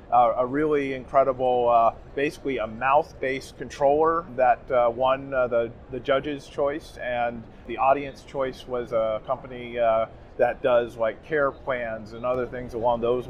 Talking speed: 160 wpm